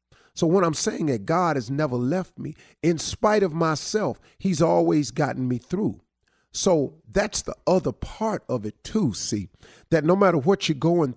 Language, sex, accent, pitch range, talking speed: English, male, American, 110-160 Hz, 185 wpm